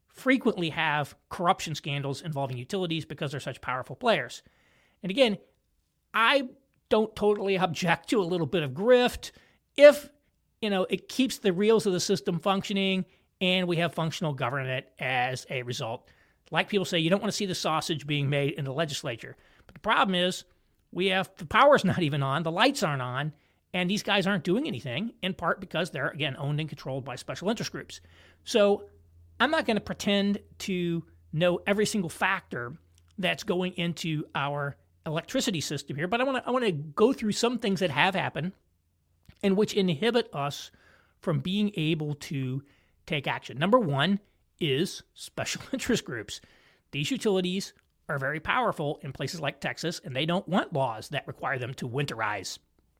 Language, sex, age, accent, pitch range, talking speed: English, male, 40-59, American, 140-200 Hz, 175 wpm